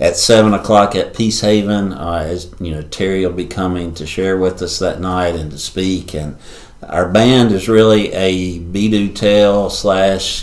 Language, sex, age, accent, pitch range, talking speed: English, male, 50-69, American, 90-105 Hz, 185 wpm